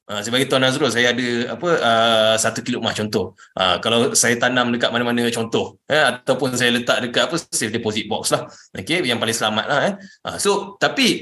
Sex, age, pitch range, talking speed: male, 20-39, 125-180 Hz, 200 wpm